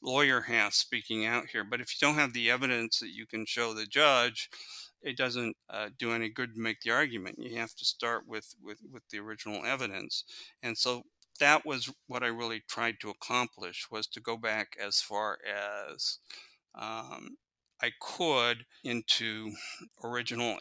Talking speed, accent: 175 wpm, American